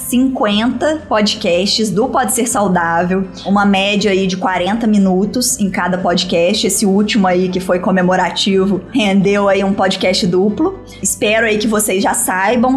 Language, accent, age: Portuguese, Brazilian, 20-39